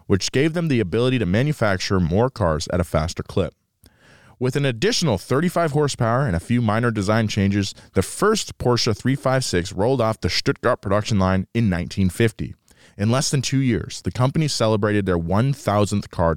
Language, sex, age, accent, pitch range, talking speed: English, male, 20-39, American, 95-135 Hz, 170 wpm